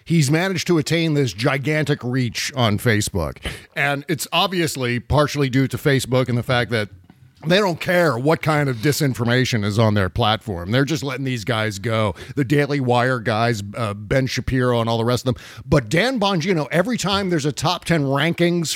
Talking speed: 190 wpm